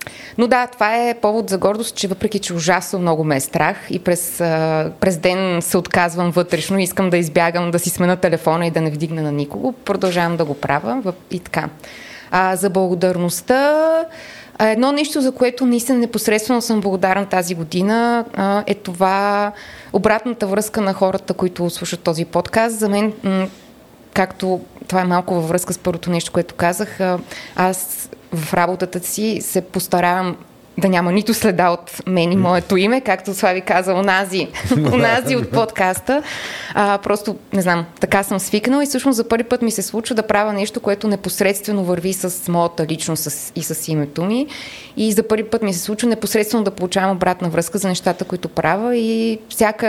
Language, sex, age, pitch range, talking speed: Bulgarian, female, 20-39, 180-220 Hz, 175 wpm